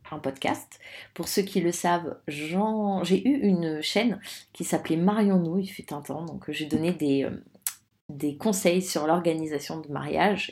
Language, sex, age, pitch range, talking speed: English, female, 30-49, 165-200 Hz, 175 wpm